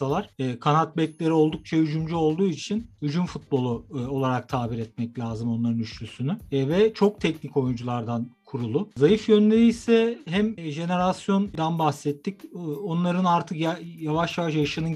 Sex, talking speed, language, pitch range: male, 145 wpm, Turkish, 140-180 Hz